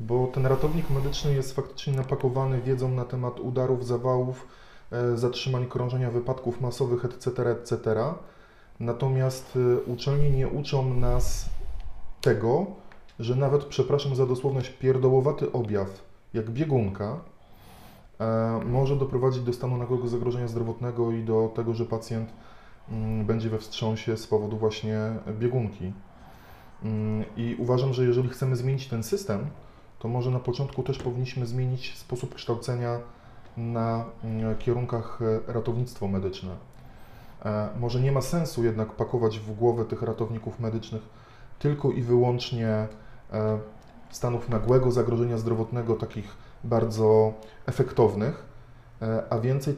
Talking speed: 115 wpm